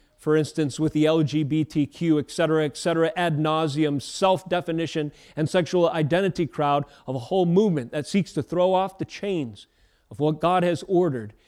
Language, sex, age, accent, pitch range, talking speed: English, male, 40-59, American, 150-185 Hz, 165 wpm